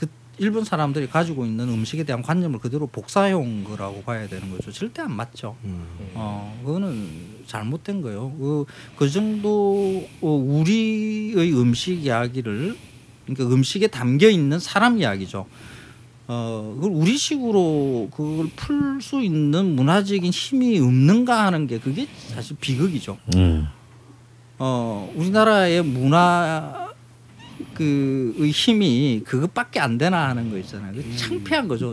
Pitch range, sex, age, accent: 120-180 Hz, male, 40-59, native